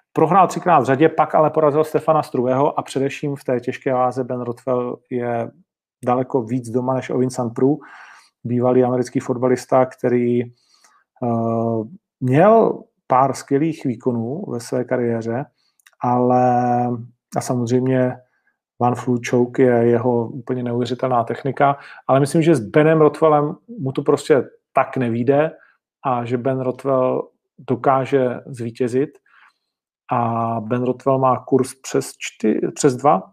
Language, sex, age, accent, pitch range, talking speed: Czech, male, 40-59, native, 125-145 Hz, 130 wpm